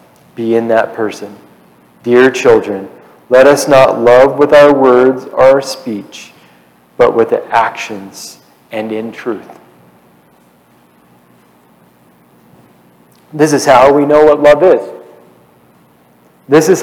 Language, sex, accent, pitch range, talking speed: English, male, American, 120-190 Hz, 120 wpm